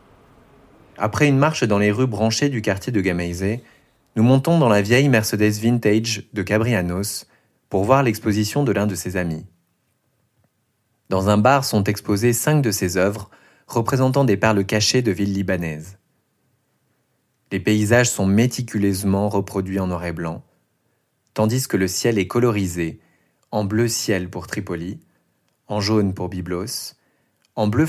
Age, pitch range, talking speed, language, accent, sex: 30-49, 95-115 Hz, 150 wpm, French, French, male